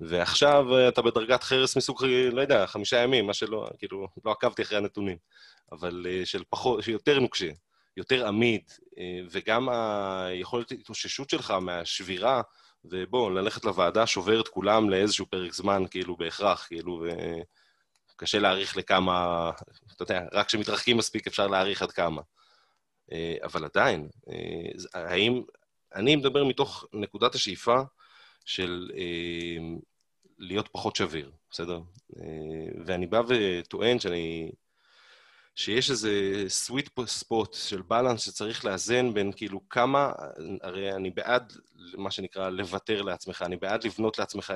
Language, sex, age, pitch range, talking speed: Hebrew, male, 20-39, 90-115 Hz, 125 wpm